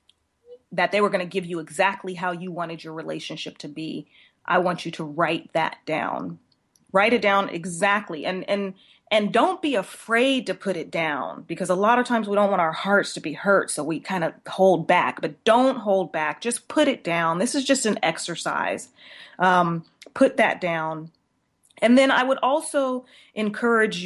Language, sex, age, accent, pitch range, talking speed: English, female, 30-49, American, 165-205 Hz, 195 wpm